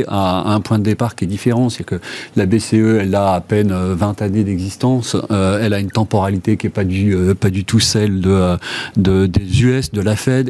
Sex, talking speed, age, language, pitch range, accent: male, 225 wpm, 40-59, French, 105-125 Hz, French